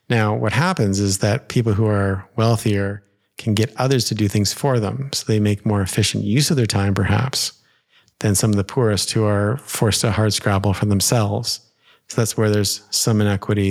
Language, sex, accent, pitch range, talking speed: English, male, American, 105-125 Hz, 200 wpm